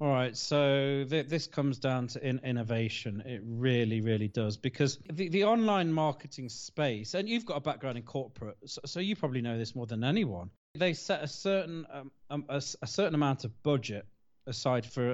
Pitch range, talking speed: 115-140 Hz, 200 wpm